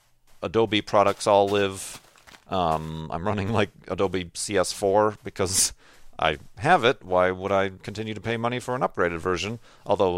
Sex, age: male, 40-59